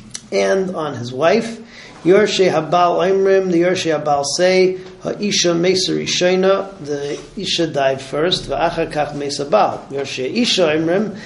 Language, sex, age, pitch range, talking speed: English, male, 40-59, 155-185 Hz, 115 wpm